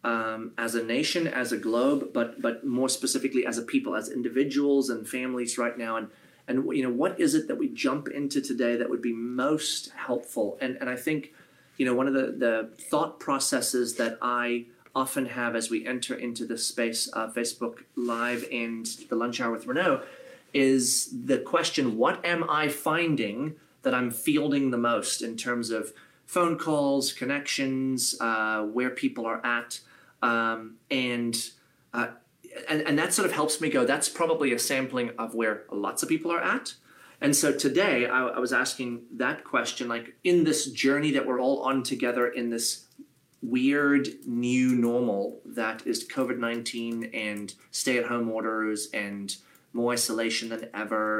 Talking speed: 175 wpm